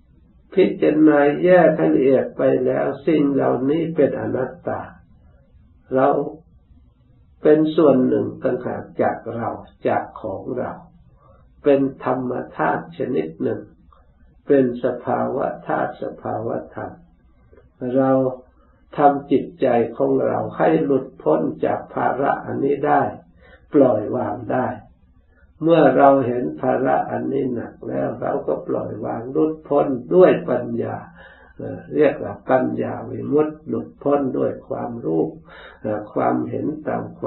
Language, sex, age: Thai, male, 60-79